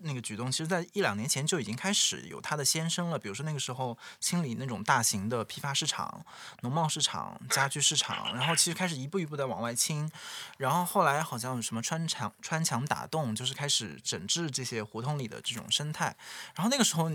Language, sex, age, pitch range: Chinese, male, 20-39, 115-165 Hz